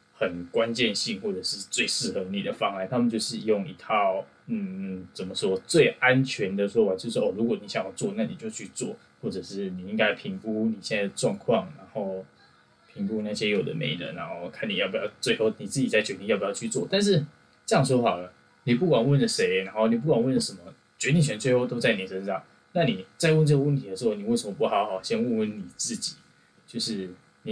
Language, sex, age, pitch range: Chinese, male, 20-39, 95-155 Hz